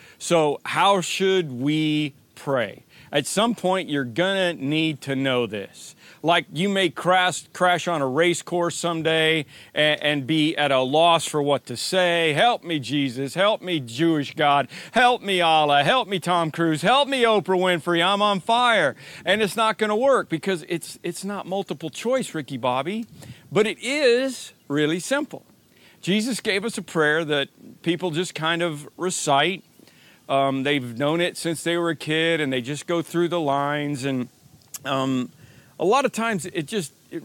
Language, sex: English, male